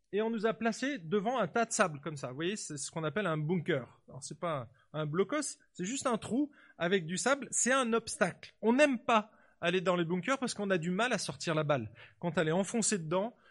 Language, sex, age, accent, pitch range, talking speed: French, male, 30-49, French, 150-230 Hz, 250 wpm